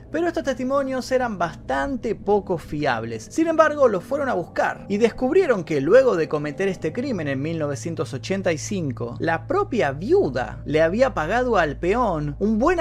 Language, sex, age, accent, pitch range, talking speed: Spanish, male, 30-49, Argentinian, 155-235 Hz, 155 wpm